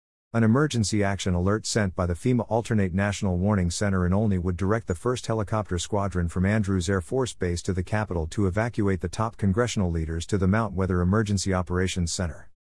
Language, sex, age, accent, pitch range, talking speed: English, male, 50-69, American, 90-110 Hz, 195 wpm